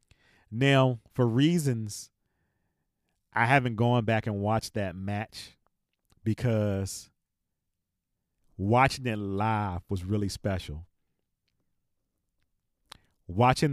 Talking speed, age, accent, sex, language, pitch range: 85 wpm, 40-59, American, male, English, 95-120 Hz